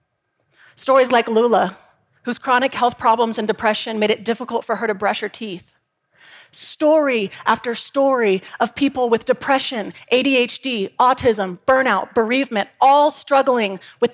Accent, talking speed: American, 135 wpm